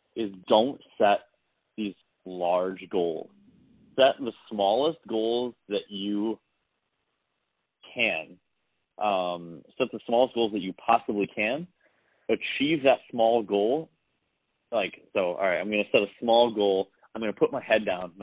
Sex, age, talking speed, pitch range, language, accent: male, 30-49, 140 wpm, 95-110 Hz, English, American